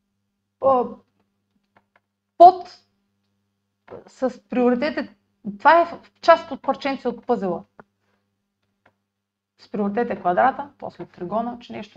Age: 30-49